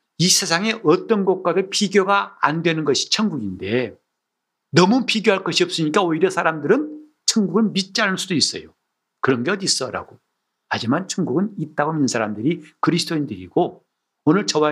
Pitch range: 135-190 Hz